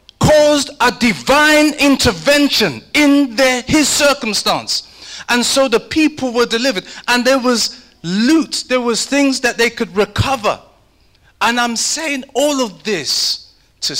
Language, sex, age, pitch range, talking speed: English, male, 30-49, 215-270 Hz, 135 wpm